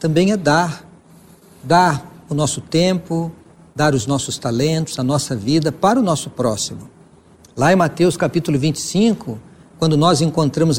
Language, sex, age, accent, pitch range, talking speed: Portuguese, male, 60-79, Brazilian, 150-190 Hz, 145 wpm